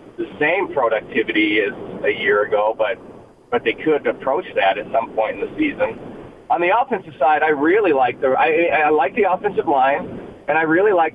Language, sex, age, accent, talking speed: English, male, 40-59, American, 200 wpm